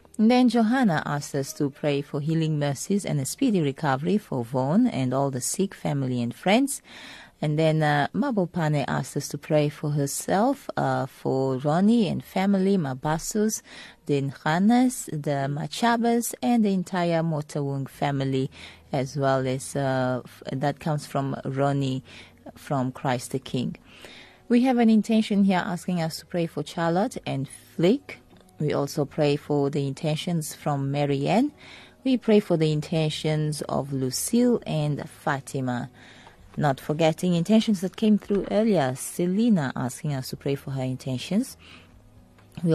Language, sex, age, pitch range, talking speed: English, female, 30-49, 135-180 Hz, 150 wpm